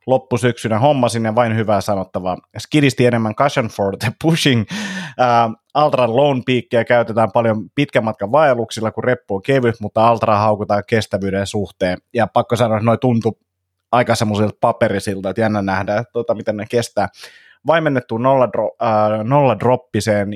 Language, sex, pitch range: Finnish, male, 105-125 Hz